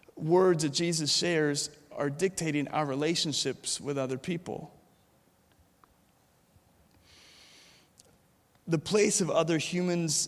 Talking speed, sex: 95 wpm, male